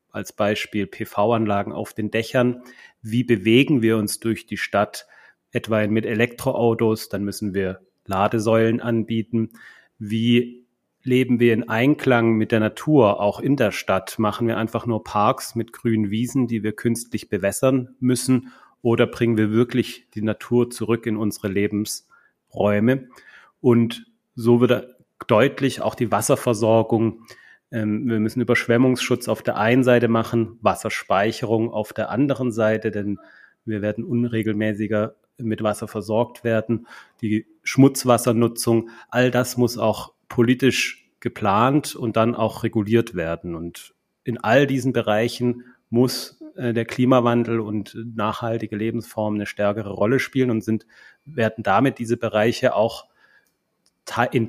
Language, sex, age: German, male, 30-49